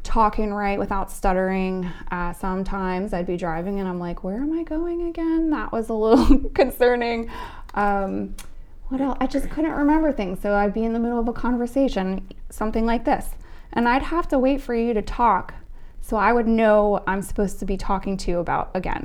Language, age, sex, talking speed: English, 20-39, female, 205 wpm